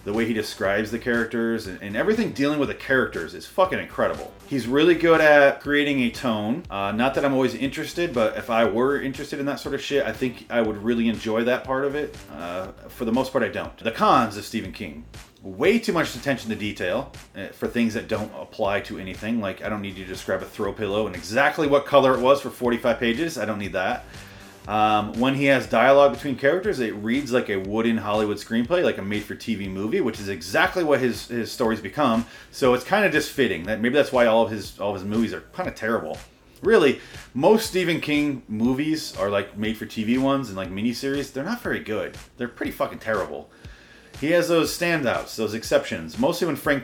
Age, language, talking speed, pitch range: 30-49, English, 220 wpm, 105-140 Hz